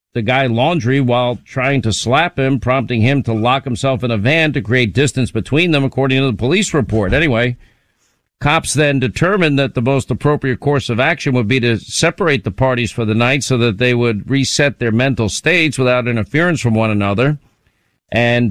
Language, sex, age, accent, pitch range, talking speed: English, male, 50-69, American, 115-140 Hz, 195 wpm